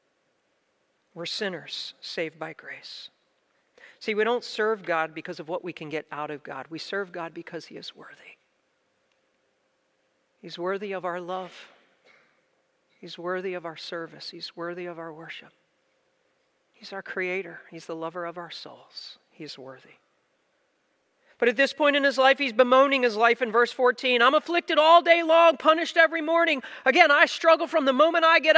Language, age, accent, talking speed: English, 40-59, American, 170 wpm